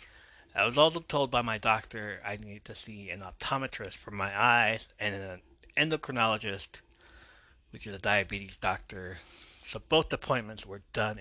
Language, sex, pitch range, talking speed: English, male, 95-125 Hz, 155 wpm